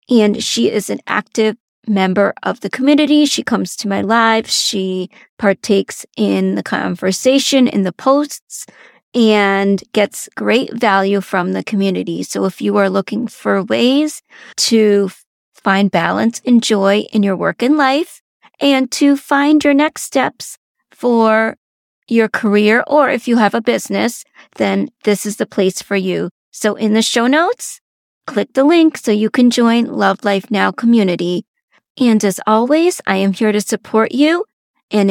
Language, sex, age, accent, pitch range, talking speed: English, female, 40-59, American, 200-255 Hz, 160 wpm